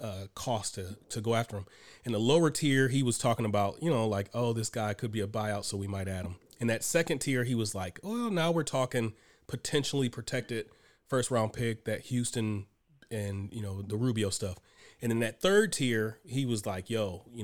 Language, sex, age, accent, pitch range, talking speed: English, male, 30-49, American, 100-120 Hz, 220 wpm